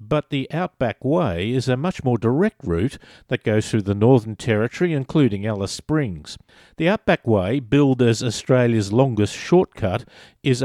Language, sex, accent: English, male, Australian